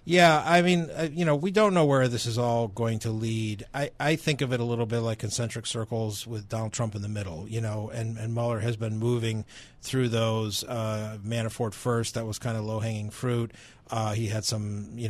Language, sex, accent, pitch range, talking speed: English, male, American, 110-125 Hz, 225 wpm